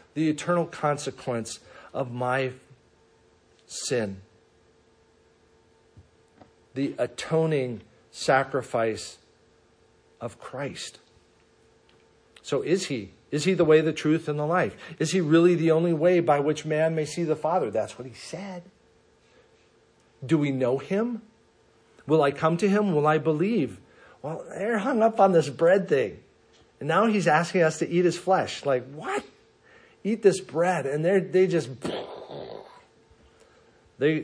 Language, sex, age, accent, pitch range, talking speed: English, male, 50-69, American, 130-170 Hz, 140 wpm